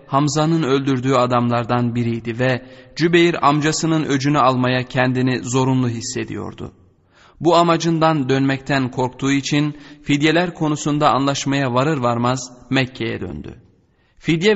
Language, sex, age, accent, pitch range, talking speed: Turkish, male, 30-49, native, 125-150 Hz, 105 wpm